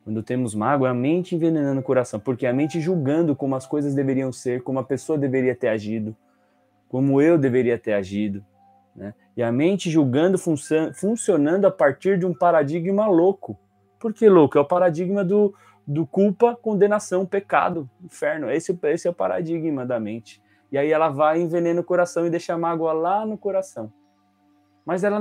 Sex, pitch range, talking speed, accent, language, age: male, 115-180 Hz, 180 wpm, Brazilian, Portuguese, 20-39